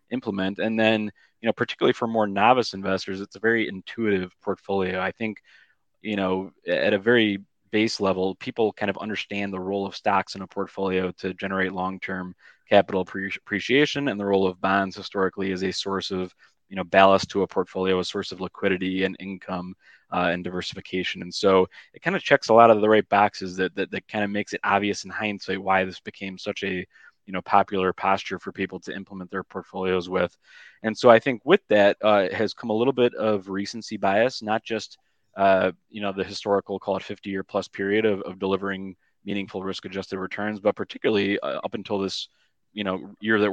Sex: male